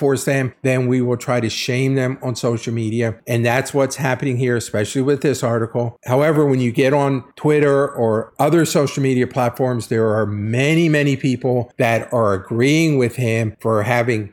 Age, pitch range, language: 50-69, 125-175 Hz, English